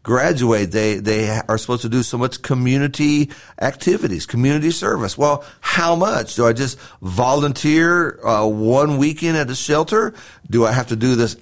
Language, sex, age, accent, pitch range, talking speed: English, male, 50-69, American, 125-170 Hz, 170 wpm